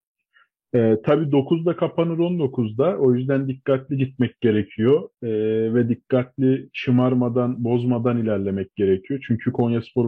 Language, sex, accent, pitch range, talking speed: Turkish, male, native, 115-130 Hz, 120 wpm